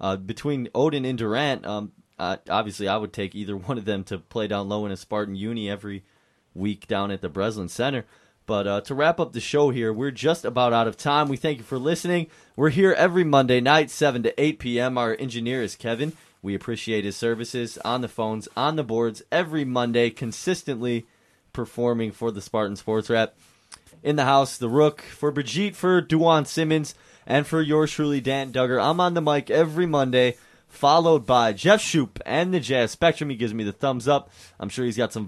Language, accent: English, American